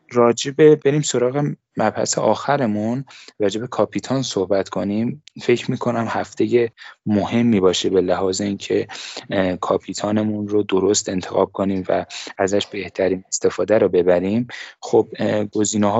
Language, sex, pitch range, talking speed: Persian, male, 95-115 Hz, 115 wpm